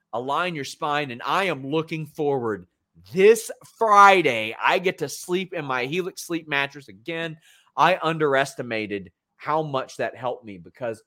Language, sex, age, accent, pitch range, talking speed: English, male, 30-49, American, 120-170 Hz, 150 wpm